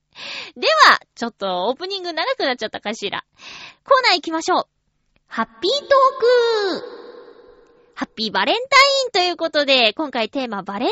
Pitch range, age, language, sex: 235-370 Hz, 20-39, Japanese, female